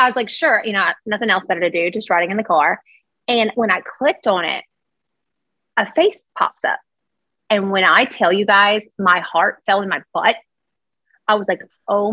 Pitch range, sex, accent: 190-235 Hz, female, American